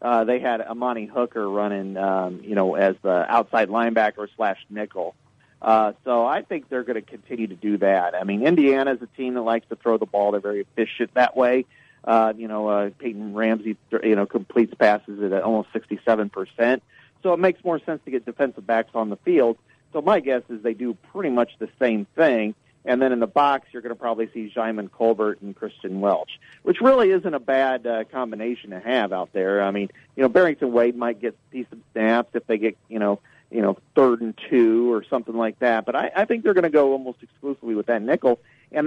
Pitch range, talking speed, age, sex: 110-130 Hz, 220 wpm, 40-59, male